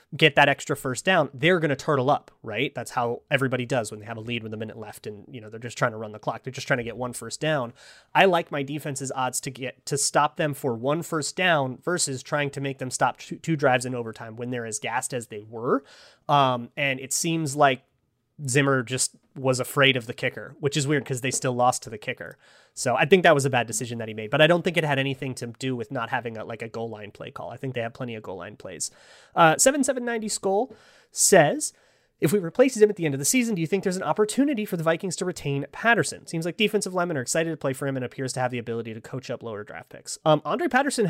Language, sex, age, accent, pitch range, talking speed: English, male, 30-49, American, 120-155 Hz, 270 wpm